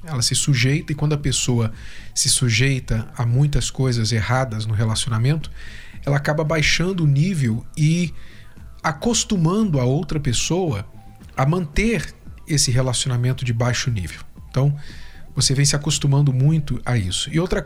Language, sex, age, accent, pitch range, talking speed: Portuguese, male, 40-59, Brazilian, 125-175 Hz, 145 wpm